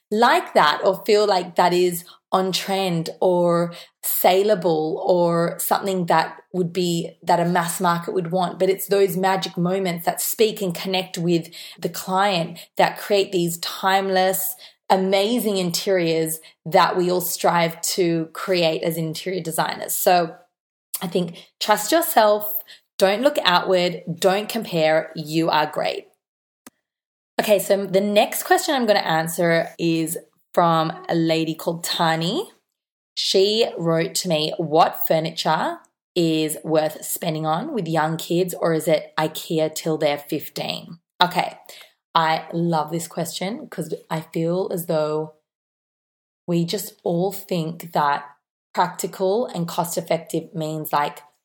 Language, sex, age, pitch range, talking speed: English, female, 20-39, 160-190 Hz, 135 wpm